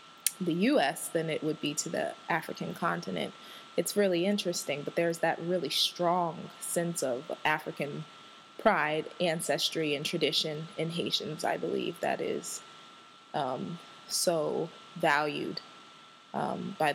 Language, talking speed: English, 130 wpm